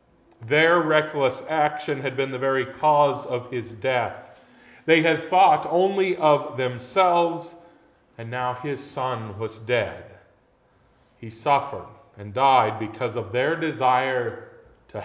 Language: English